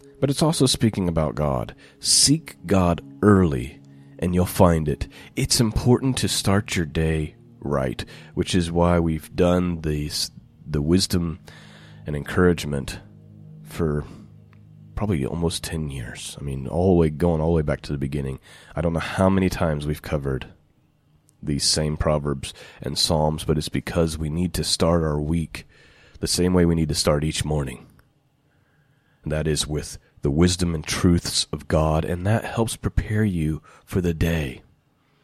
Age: 30-49